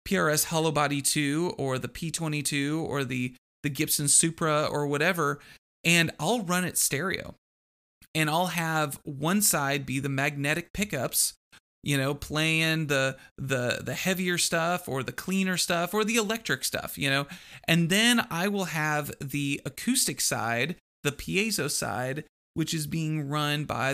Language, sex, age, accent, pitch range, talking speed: English, male, 30-49, American, 140-180 Hz, 155 wpm